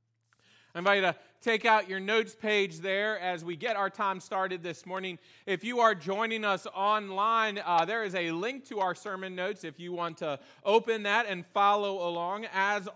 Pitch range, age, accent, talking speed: 160-205 Hz, 30-49, American, 200 wpm